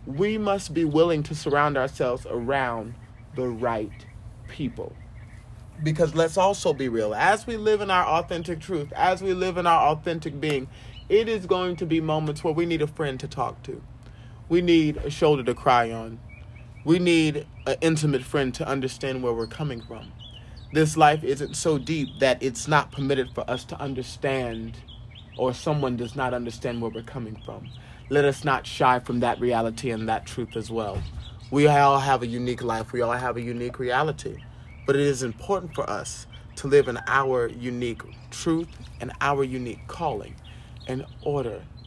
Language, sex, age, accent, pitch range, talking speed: English, male, 30-49, American, 115-150 Hz, 180 wpm